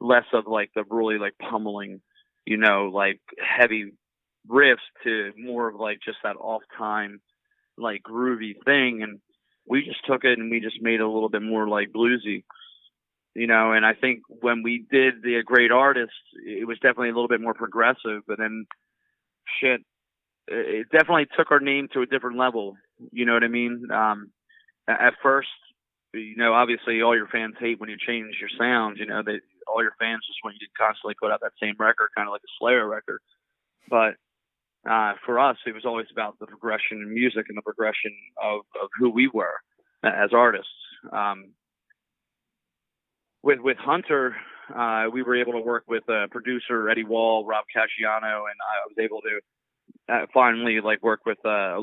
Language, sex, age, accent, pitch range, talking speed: English, male, 30-49, American, 110-120 Hz, 190 wpm